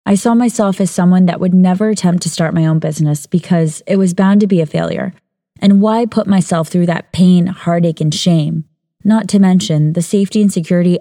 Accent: American